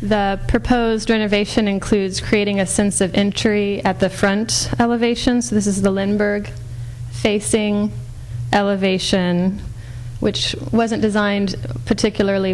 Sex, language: female, English